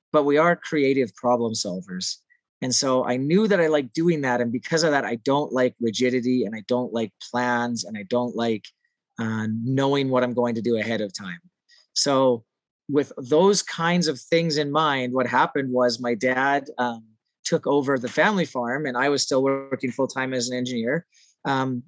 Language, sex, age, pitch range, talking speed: English, male, 30-49, 120-145 Hz, 195 wpm